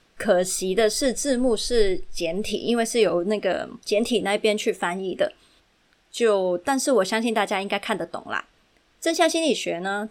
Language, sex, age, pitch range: Chinese, female, 20-39, 190-245 Hz